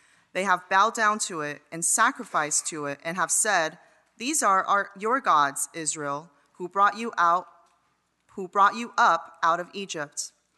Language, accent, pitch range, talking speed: English, American, 170-215 Hz, 145 wpm